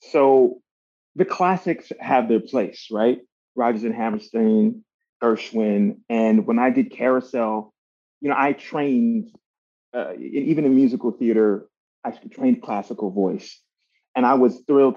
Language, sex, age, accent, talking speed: English, male, 30-49, American, 130 wpm